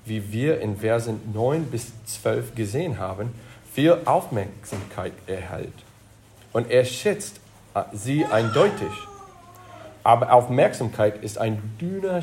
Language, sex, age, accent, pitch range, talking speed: German, male, 40-59, German, 105-135 Hz, 110 wpm